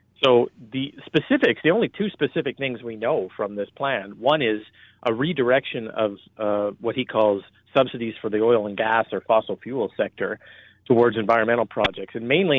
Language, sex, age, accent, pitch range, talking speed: English, male, 40-59, American, 105-120 Hz, 175 wpm